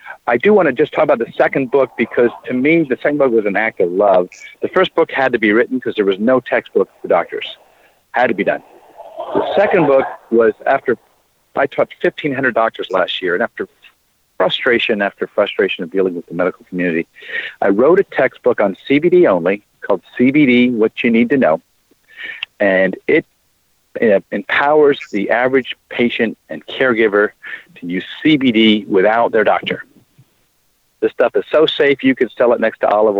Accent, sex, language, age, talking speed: American, male, English, 50-69, 180 wpm